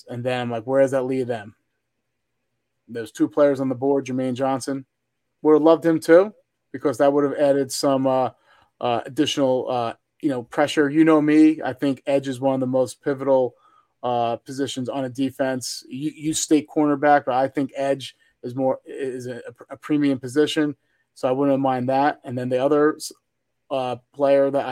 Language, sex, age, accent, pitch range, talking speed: English, male, 30-49, American, 125-145 Hz, 190 wpm